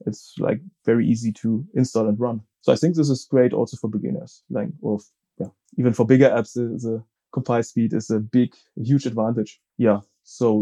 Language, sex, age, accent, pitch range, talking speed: English, male, 20-39, German, 120-150 Hz, 200 wpm